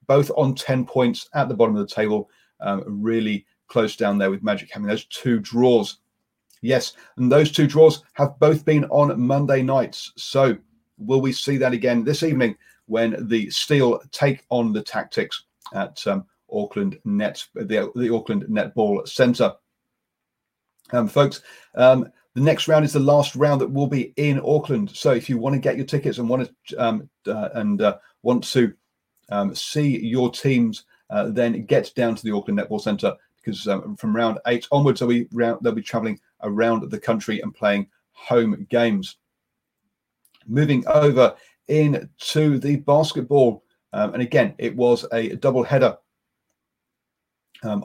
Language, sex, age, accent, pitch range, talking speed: English, male, 40-59, British, 115-145 Hz, 165 wpm